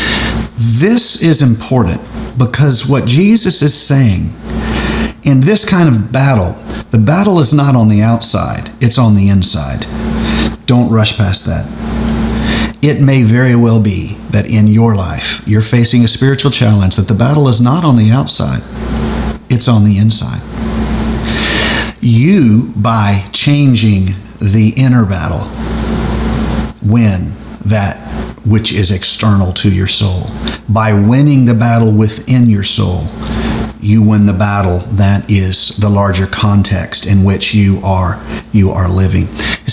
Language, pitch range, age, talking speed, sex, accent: English, 105-125 Hz, 50-69, 140 wpm, male, American